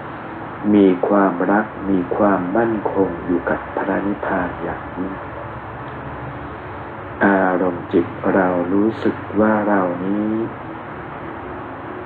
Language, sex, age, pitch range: Thai, male, 60-79, 95-110 Hz